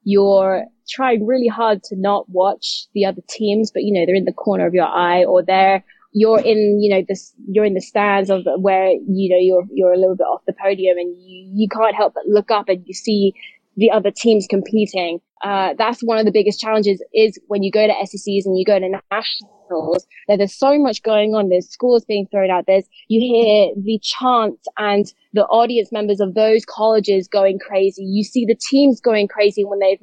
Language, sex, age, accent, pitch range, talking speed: English, female, 20-39, British, 190-225 Hz, 220 wpm